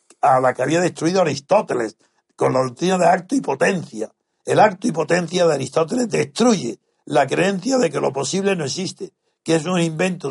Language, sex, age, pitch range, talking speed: Spanish, male, 60-79, 150-185 Hz, 185 wpm